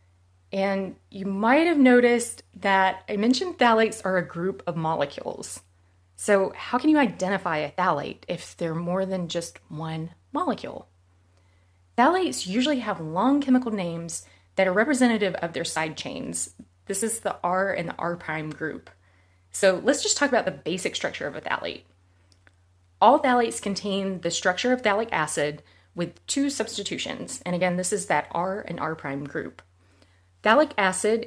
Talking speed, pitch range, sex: 160 wpm, 155-210 Hz, female